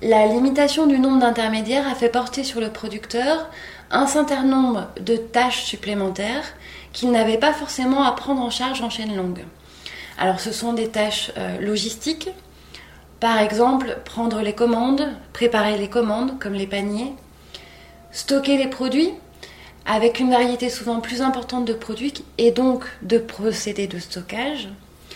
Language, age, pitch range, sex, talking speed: French, 20-39, 210-260 Hz, female, 150 wpm